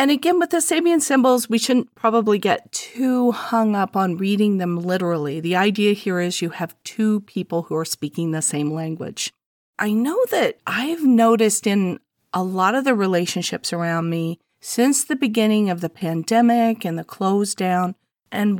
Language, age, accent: English, 40-59, American